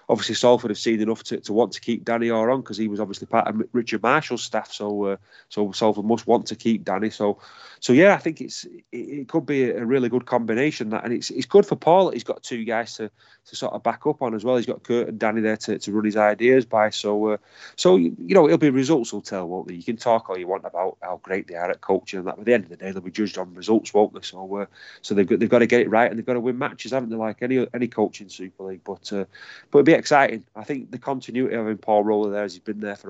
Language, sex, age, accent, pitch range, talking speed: English, male, 30-49, British, 100-115 Hz, 295 wpm